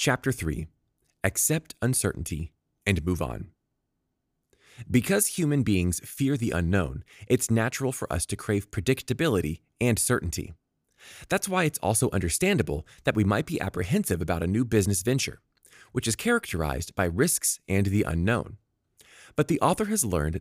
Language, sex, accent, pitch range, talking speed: English, male, American, 90-135 Hz, 145 wpm